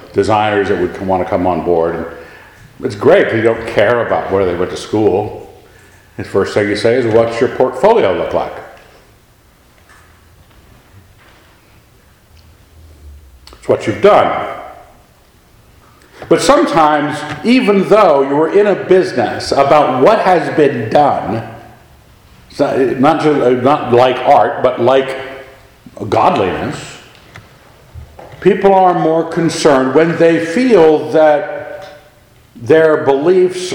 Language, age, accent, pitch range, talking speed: English, 60-79, American, 95-150 Hz, 120 wpm